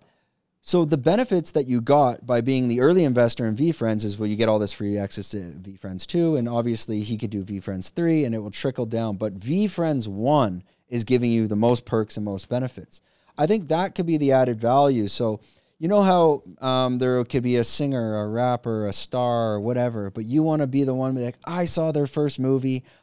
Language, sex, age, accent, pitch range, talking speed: English, male, 30-49, American, 110-145 Hz, 230 wpm